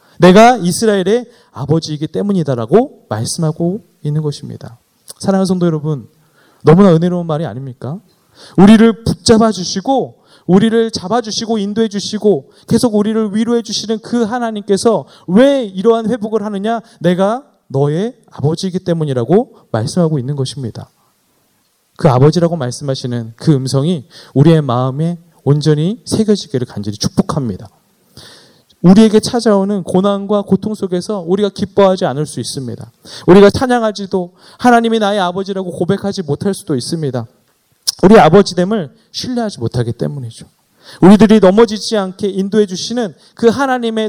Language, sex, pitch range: Korean, male, 150-215 Hz